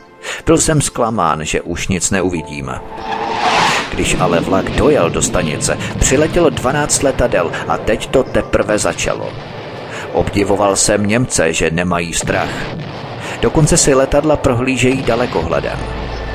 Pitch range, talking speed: 95-115 Hz, 120 wpm